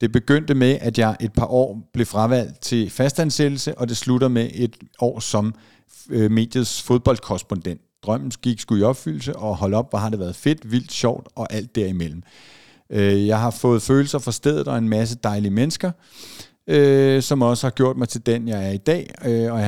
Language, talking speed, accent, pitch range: Danish, 205 wpm, native, 105-130 Hz